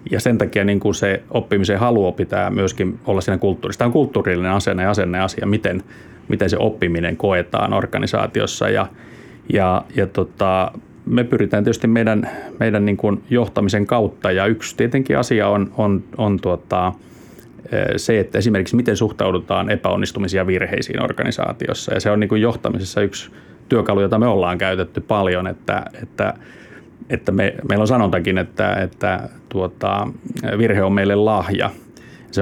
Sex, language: male, Finnish